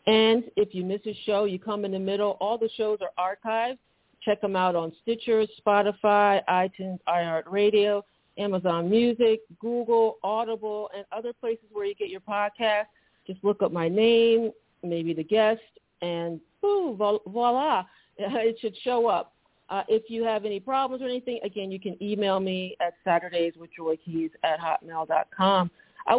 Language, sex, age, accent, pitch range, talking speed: English, female, 50-69, American, 190-230 Hz, 155 wpm